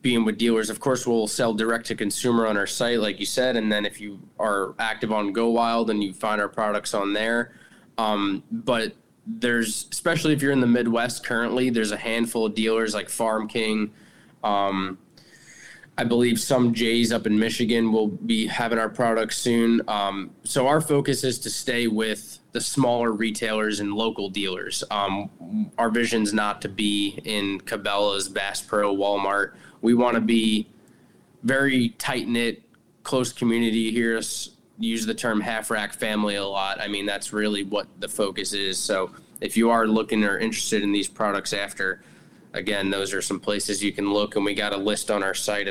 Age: 20-39